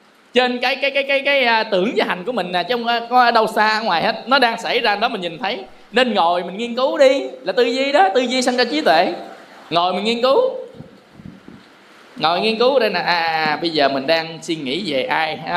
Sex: male